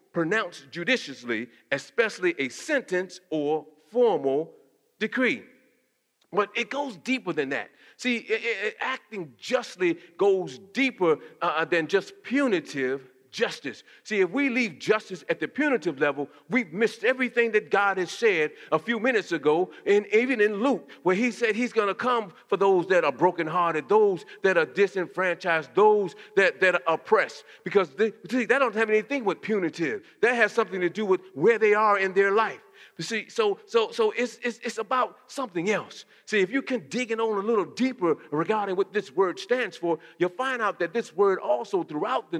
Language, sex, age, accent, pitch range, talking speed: English, male, 40-59, American, 175-245 Hz, 175 wpm